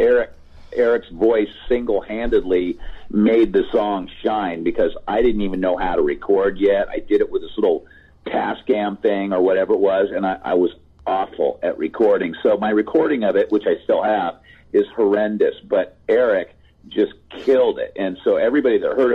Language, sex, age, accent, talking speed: English, male, 50-69, American, 180 wpm